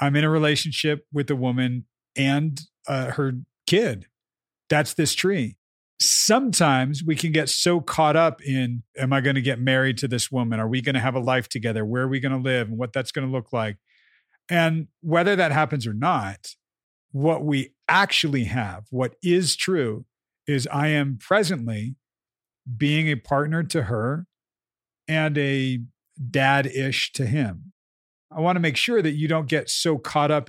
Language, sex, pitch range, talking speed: English, male, 125-155 Hz, 180 wpm